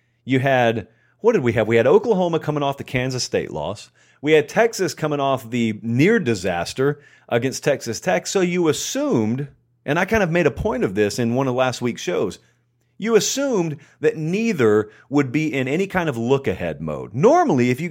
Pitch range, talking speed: 120-165 Hz, 200 wpm